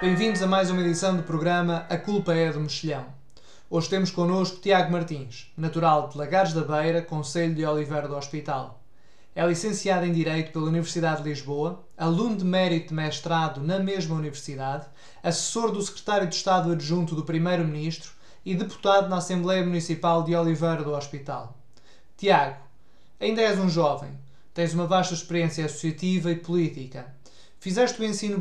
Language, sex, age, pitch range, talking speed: Portuguese, male, 20-39, 155-185 Hz, 160 wpm